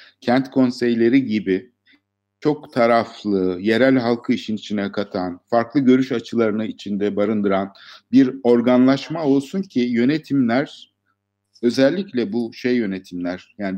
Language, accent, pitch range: Turkish, native, 105-135 Hz